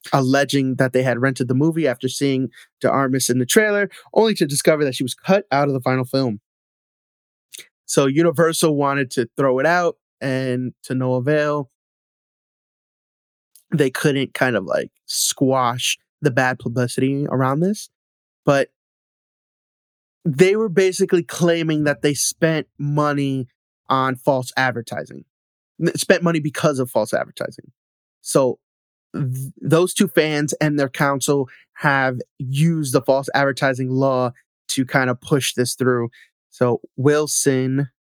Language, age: English, 20-39